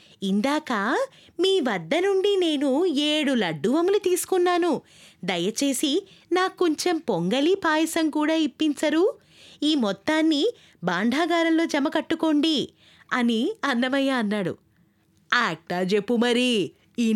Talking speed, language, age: 90 wpm, Telugu, 20-39